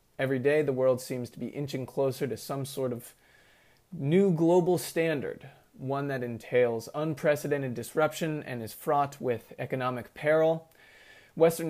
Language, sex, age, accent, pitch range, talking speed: English, male, 30-49, American, 125-155 Hz, 145 wpm